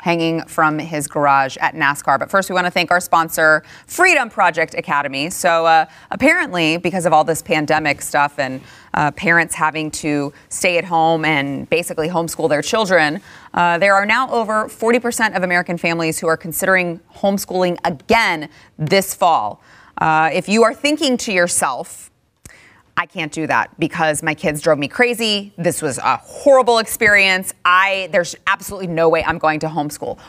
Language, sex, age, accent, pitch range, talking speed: English, female, 30-49, American, 160-205 Hz, 170 wpm